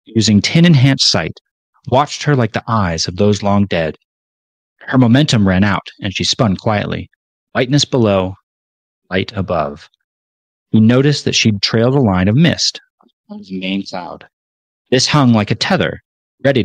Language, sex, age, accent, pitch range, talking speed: English, male, 30-49, American, 95-125 Hz, 160 wpm